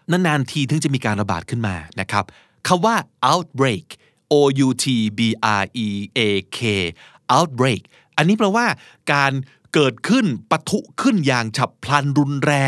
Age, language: 30-49, Thai